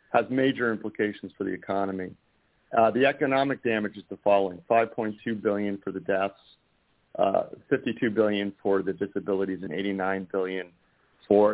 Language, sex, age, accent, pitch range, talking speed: English, male, 50-69, American, 100-115 Hz, 155 wpm